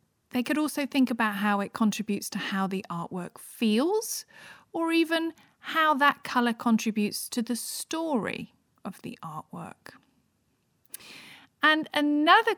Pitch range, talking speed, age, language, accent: 215-290 Hz, 130 wpm, 40-59, English, British